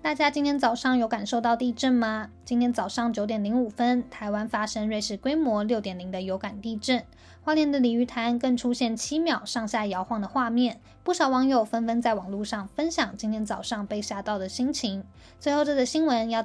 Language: Chinese